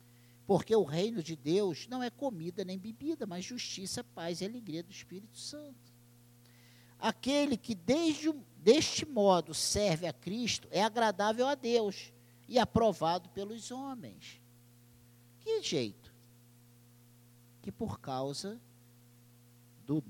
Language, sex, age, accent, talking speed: Portuguese, male, 50-69, Brazilian, 115 wpm